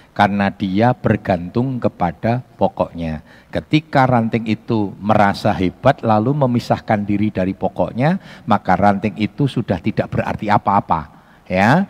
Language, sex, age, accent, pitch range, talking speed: Indonesian, male, 50-69, native, 95-120 Hz, 115 wpm